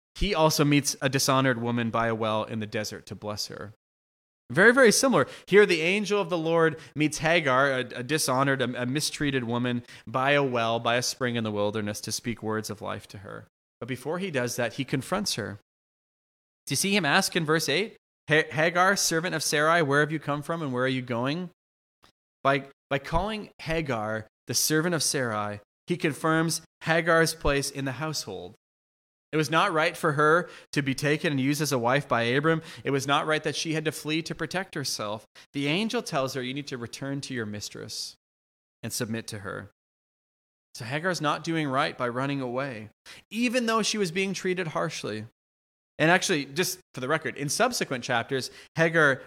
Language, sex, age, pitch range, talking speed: English, male, 20-39, 115-160 Hz, 195 wpm